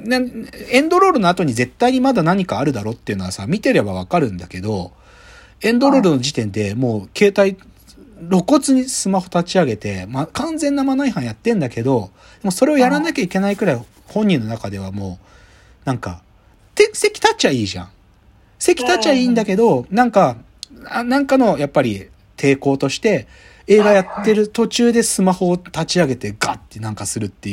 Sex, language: male, Japanese